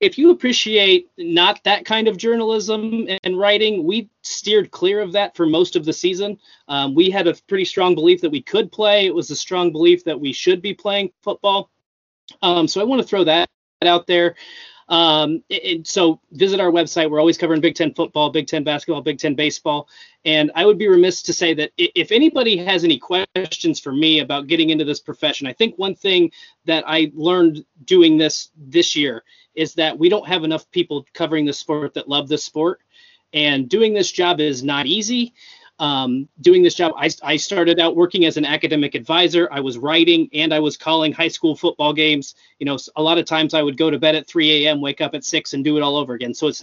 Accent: American